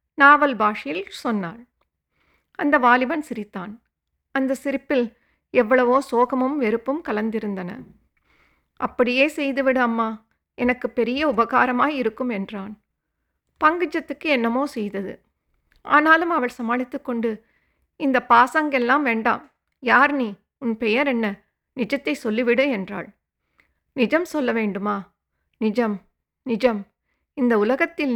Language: English